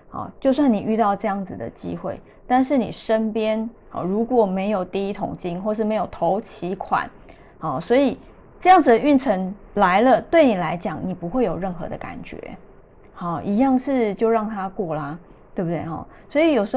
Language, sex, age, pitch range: Chinese, female, 20-39, 190-250 Hz